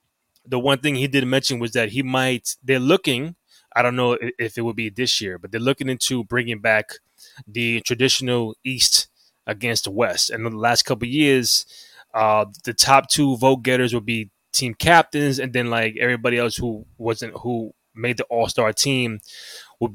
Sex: male